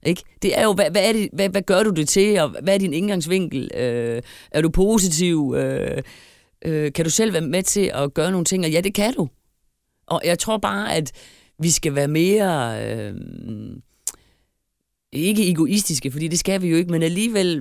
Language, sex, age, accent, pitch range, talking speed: Danish, female, 30-49, native, 140-190 Hz, 205 wpm